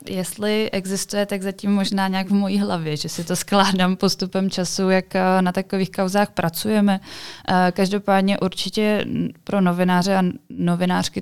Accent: native